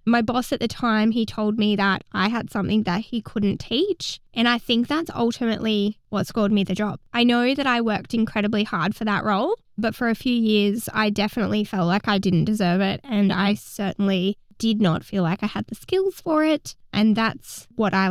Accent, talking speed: Australian, 220 wpm